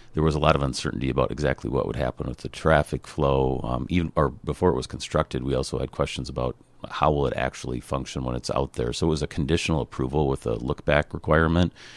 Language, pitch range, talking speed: English, 65-75 Hz, 230 wpm